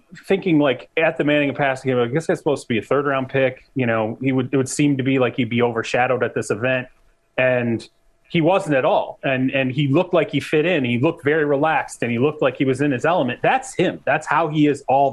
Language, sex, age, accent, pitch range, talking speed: English, male, 30-49, American, 130-155 Hz, 265 wpm